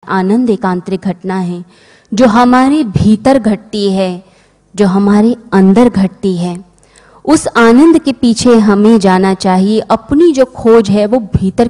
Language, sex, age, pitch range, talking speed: Hindi, female, 20-39, 195-245 Hz, 145 wpm